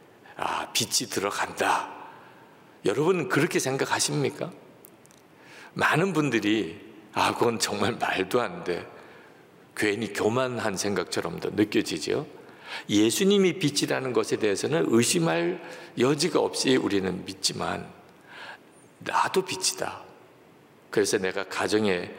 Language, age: Korean, 50-69